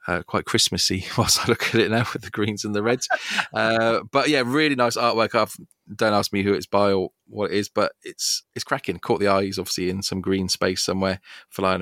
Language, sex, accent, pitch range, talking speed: English, male, British, 90-105 Hz, 235 wpm